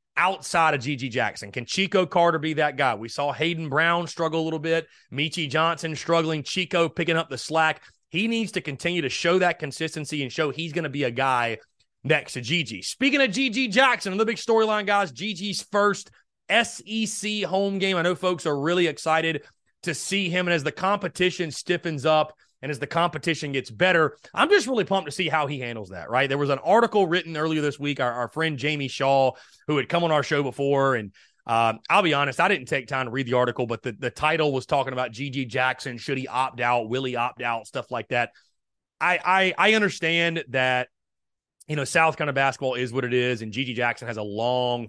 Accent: American